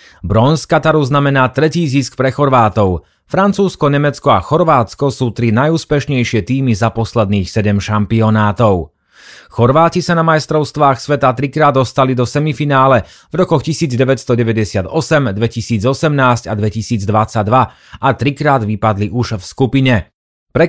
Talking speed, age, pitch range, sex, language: 120 wpm, 30-49, 115-145 Hz, male, Slovak